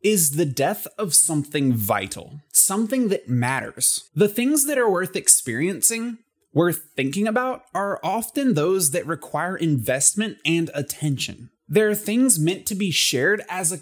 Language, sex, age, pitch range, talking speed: English, male, 20-39, 145-205 Hz, 150 wpm